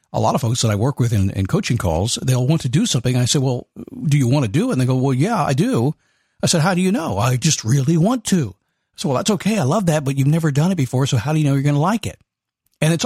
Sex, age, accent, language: male, 50-69, American, English